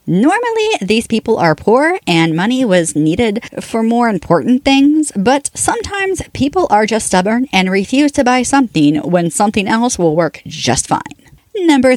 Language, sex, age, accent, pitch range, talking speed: English, female, 40-59, American, 165-275 Hz, 160 wpm